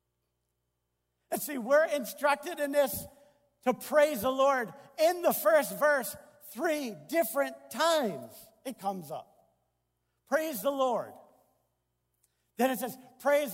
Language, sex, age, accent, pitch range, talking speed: English, male, 50-69, American, 215-285 Hz, 120 wpm